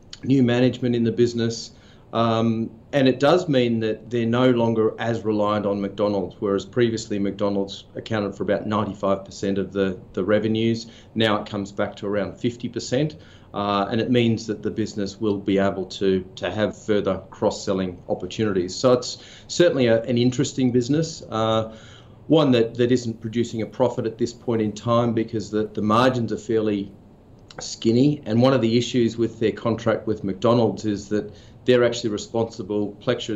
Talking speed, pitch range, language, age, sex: 170 wpm, 100-120 Hz, English, 40-59, male